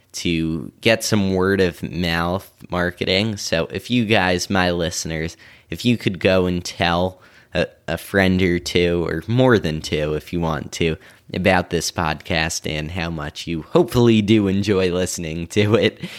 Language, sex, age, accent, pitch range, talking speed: English, male, 10-29, American, 85-110 Hz, 165 wpm